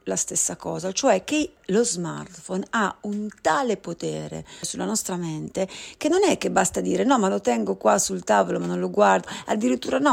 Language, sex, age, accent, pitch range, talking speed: Italian, female, 40-59, native, 175-240 Hz, 195 wpm